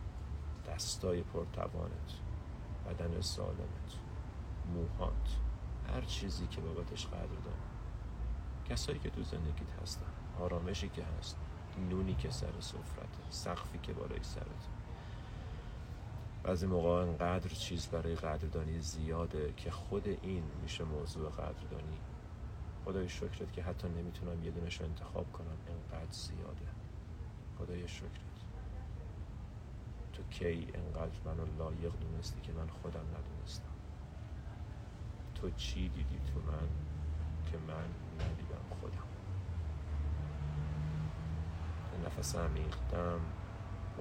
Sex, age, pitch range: male, 40-59, 80-95 Hz